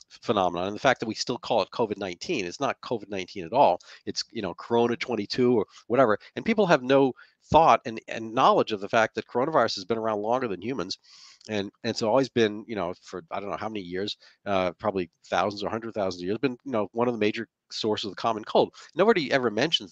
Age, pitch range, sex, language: 40-59, 105-130 Hz, male, English